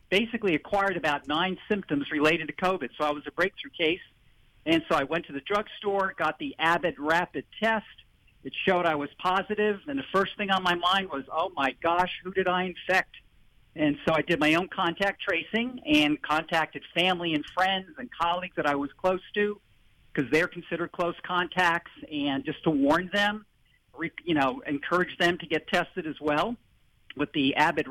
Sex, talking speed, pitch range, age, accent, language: male, 190 wpm, 155-195 Hz, 50-69, American, English